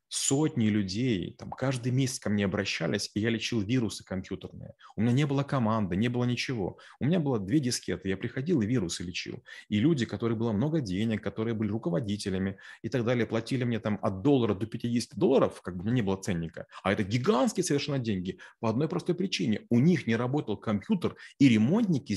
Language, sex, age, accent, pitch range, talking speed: Russian, male, 30-49, native, 110-140 Hz, 200 wpm